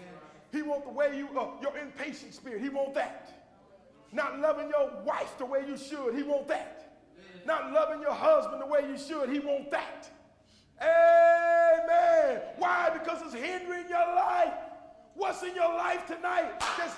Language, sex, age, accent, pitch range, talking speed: English, male, 40-59, American, 235-335 Hz, 165 wpm